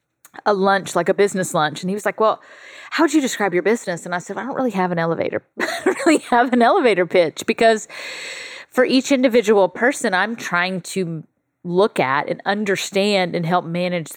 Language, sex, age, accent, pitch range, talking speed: English, female, 30-49, American, 170-205 Hz, 205 wpm